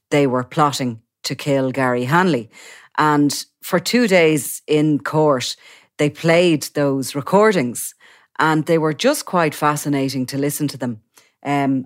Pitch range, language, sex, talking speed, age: 130-160 Hz, English, female, 140 wpm, 40-59